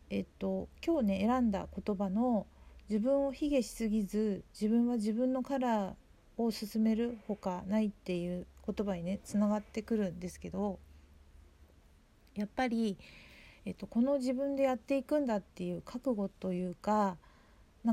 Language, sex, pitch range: Japanese, female, 190-235 Hz